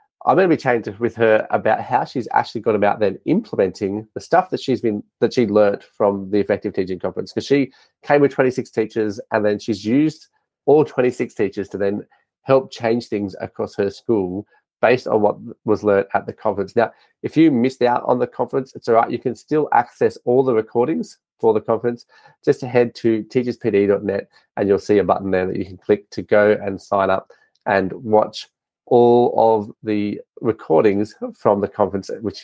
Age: 30-49